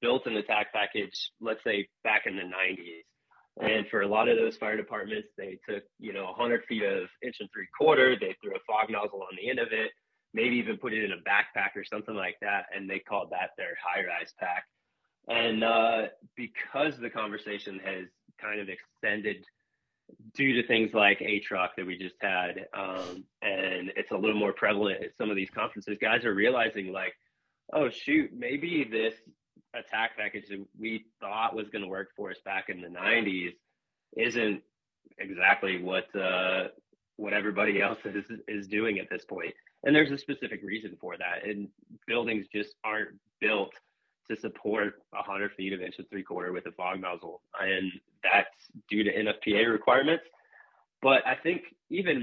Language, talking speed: English, 180 wpm